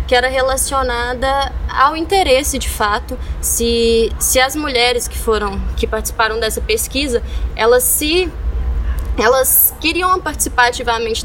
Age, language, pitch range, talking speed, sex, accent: 10-29, Portuguese, 230-310 Hz, 125 wpm, female, Brazilian